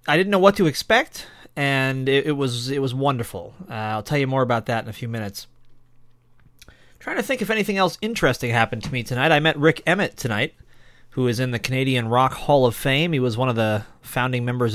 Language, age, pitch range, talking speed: English, 30-49, 115-145 Hz, 230 wpm